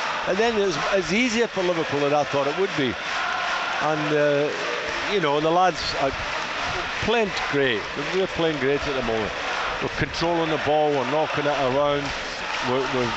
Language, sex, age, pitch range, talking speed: English, male, 60-79, 140-165 Hz, 170 wpm